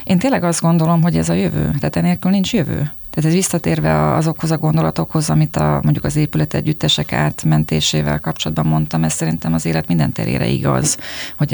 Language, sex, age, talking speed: Hungarian, female, 20-39, 180 wpm